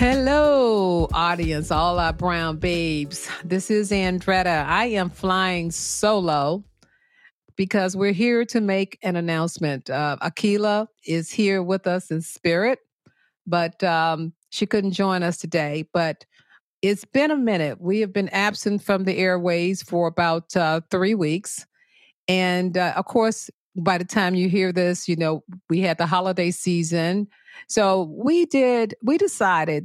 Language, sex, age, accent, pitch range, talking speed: English, female, 50-69, American, 165-195 Hz, 150 wpm